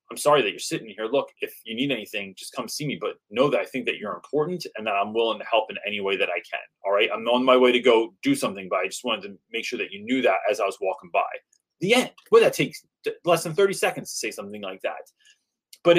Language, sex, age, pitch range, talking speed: English, male, 30-49, 120-200 Hz, 285 wpm